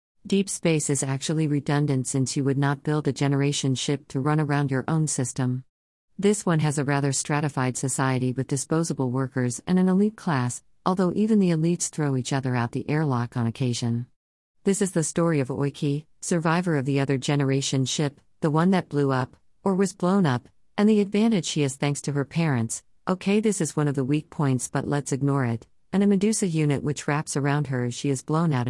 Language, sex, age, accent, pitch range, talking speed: English, female, 50-69, American, 130-160 Hz, 210 wpm